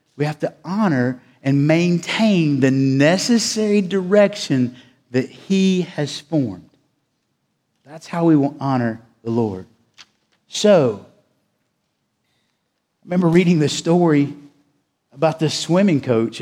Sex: male